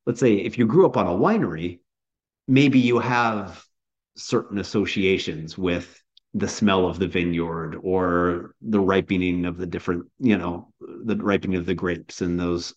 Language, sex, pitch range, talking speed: English, male, 90-110 Hz, 165 wpm